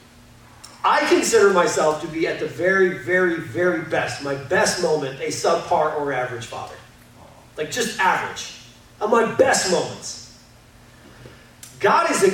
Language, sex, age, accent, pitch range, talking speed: English, male, 40-59, American, 170-260 Hz, 140 wpm